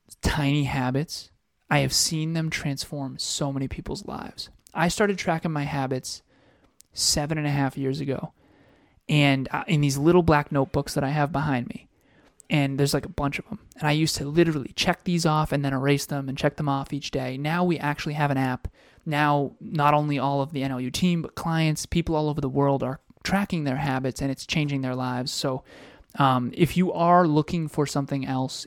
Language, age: English, 20-39